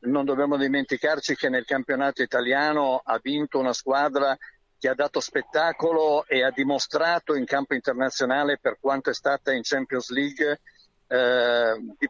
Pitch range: 135-155 Hz